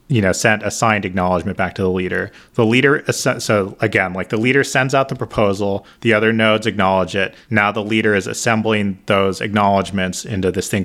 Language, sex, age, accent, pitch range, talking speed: English, male, 30-49, American, 95-110 Hz, 200 wpm